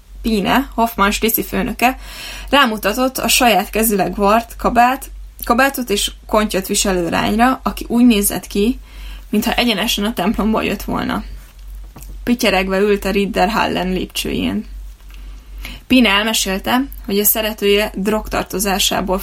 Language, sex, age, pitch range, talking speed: Hungarian, female, 20-39, 185-230 Hz, 110 wpm